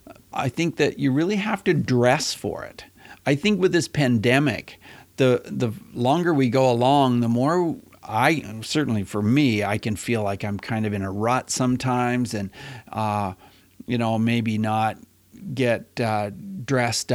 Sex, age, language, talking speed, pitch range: male, 50-69, English, 165 wpm, 110-130 Hz